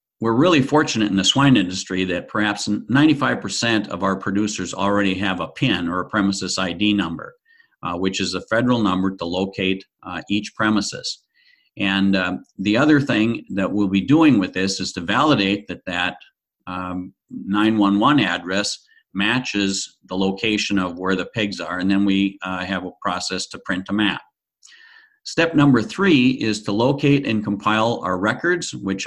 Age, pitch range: 50-69, 95-130 Hz